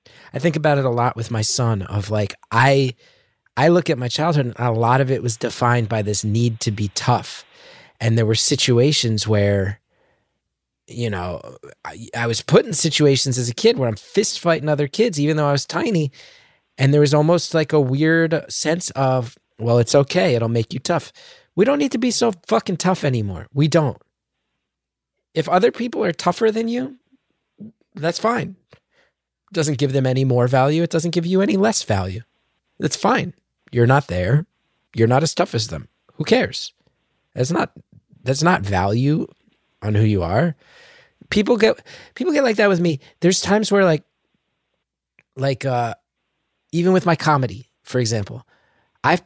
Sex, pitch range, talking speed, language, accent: male, 120-170 Hz, 180 wpm, English, American